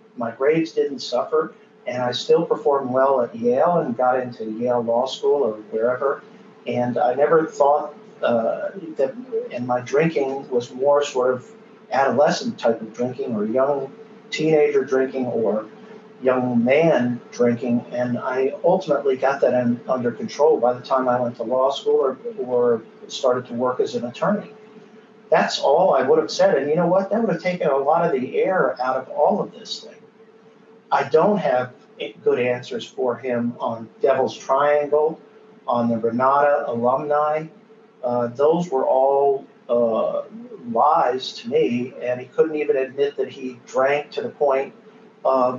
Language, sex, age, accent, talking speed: English, male, 50-69, American, 165 wpm